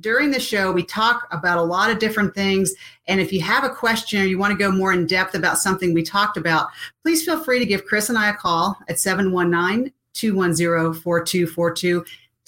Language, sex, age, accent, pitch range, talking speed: English, female, 40-59, American, 175-210 Hz, 200 wpm